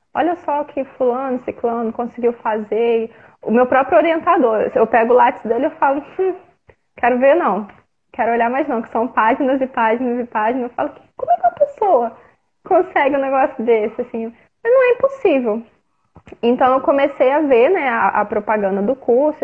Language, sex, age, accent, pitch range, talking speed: Portuguese, female, 20-39, Brazilian, 220-270 Hz, 185 wpm